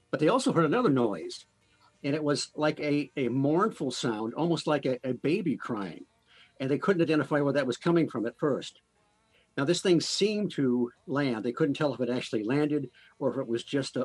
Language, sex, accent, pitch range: English, male, American, 120-150 Hz